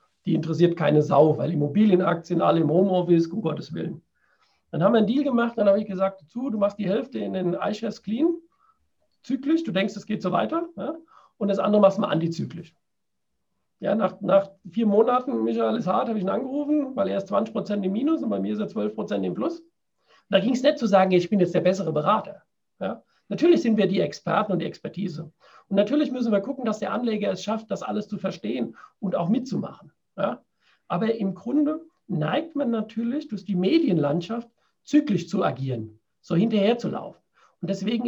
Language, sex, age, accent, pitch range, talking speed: German, male, 50-69, German, 190-240 Hz, 200 wpm